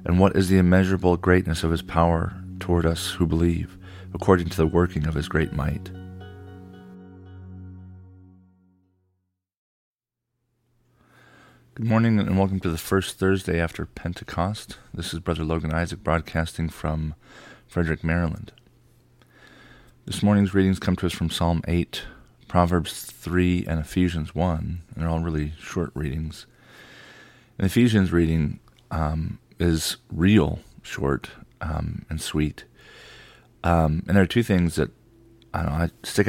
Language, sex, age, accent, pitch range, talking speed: English, male, 40-59, American, 80-95 Hz, 130 wpm